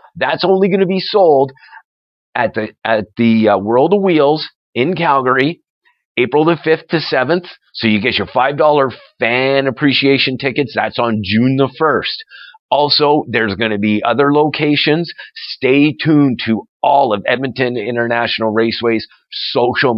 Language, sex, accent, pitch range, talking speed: English, male, American, 105-135 Hz, 150 wpm